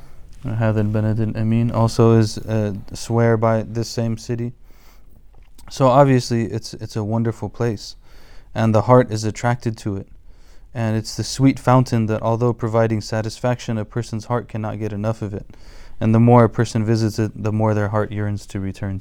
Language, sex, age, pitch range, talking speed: English, male, 20-39, 105-120 Hz, 170 wpm